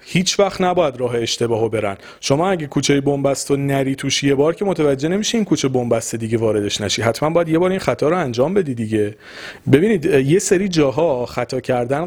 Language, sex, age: Persian, male, 40-59